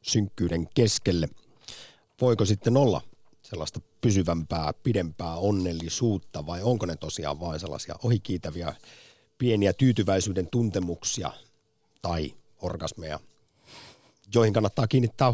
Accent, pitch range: native, 90-120 Hz